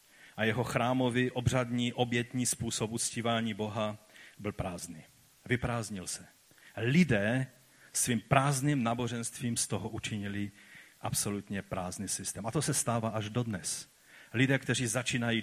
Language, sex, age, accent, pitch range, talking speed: Czech, male, 40-59, native, 105-130 Hz, 120 wpm